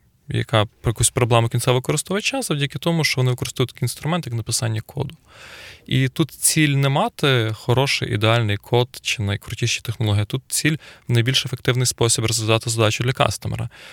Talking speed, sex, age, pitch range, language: 150 wpm, male, 20-39, 115-130 Hz, Ukrainian